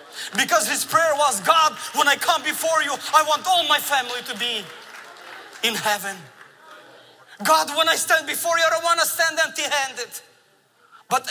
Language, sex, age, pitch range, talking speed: English, male, 30-49, 225-310 Hz, 170 wpm